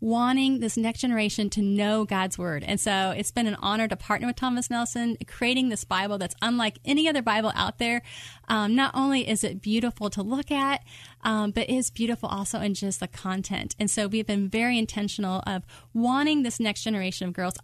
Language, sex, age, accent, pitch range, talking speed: English, female, 30-49, American, 200-240 Hz, 205 wpm